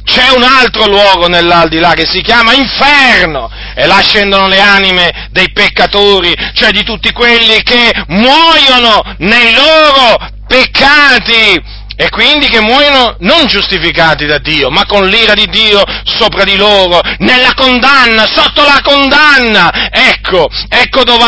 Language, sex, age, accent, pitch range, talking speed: Italian, male, 40-59, native, 190-255 Hz, 140 wpm